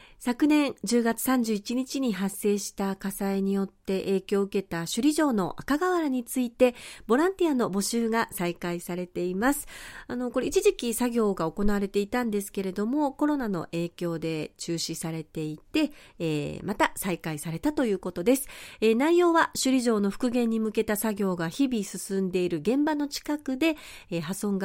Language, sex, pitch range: Japanese, female, 185-275 Hz